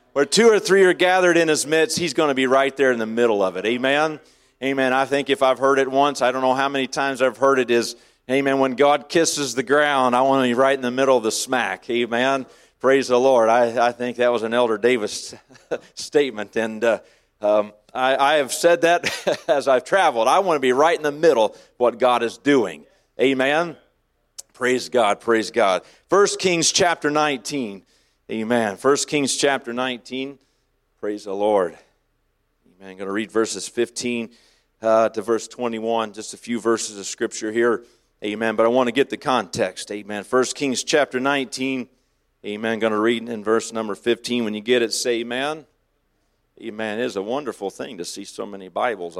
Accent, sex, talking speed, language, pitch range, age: American, male, 205 wpm, English, 115-140 Hz, 40-59